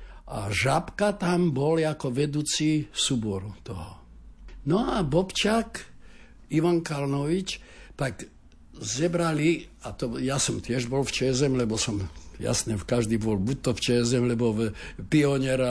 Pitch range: 115-155 Hz